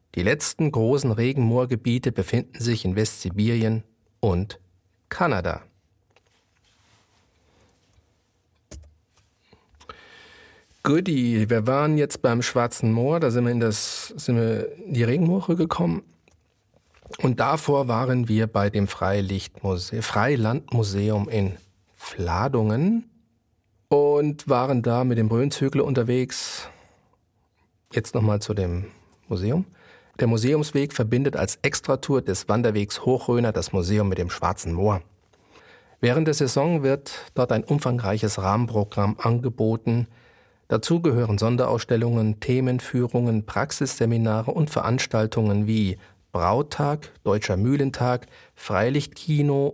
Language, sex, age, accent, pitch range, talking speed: German, male, 40-59, German, 105-135 Hz, 105 wpm